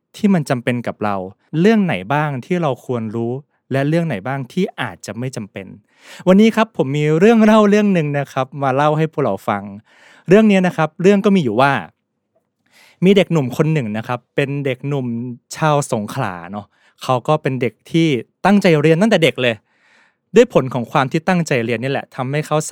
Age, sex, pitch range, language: 20-39, male, 125-170 Hz, Thai